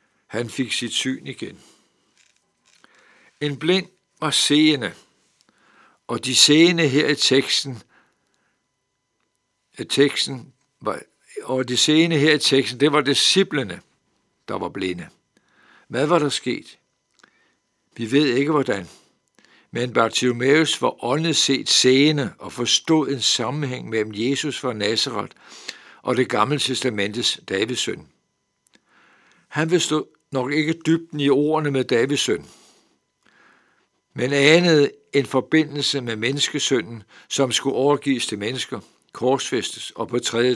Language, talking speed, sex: Danish, 125 wpm, male